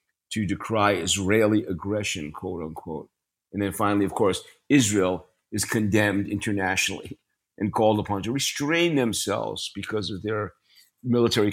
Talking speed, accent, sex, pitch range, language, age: 130 wpm, American, male, 100-120 Hz, English, 50-69